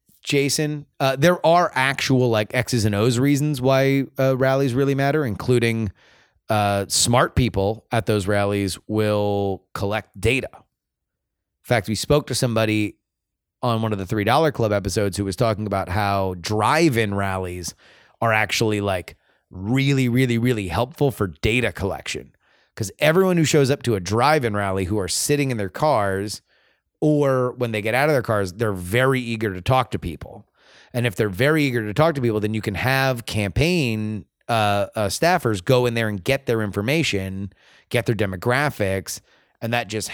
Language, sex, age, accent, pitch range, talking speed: English, male, 30-49, American, 105-140 Hz, 170 wpm